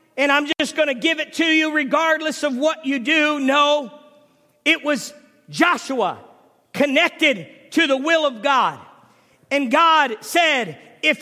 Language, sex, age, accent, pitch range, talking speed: English, male, 50-69, American, 270-315 Hz, 150 wpm